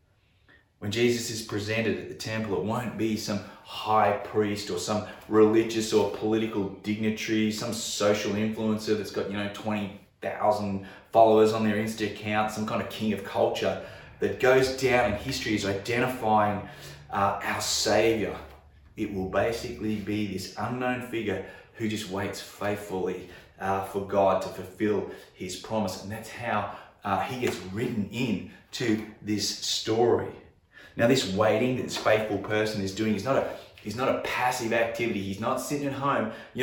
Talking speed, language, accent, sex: 160 wpm, English, Australian, male